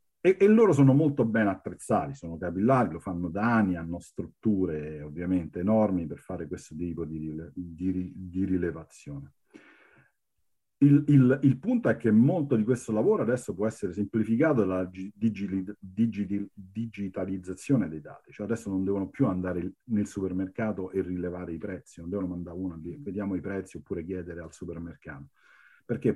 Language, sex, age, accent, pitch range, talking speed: Italian, male, 40-59, native, 90-115 Hz, 155 wpm